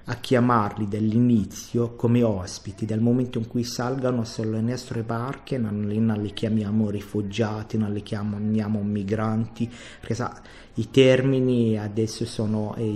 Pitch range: 110-120 Hz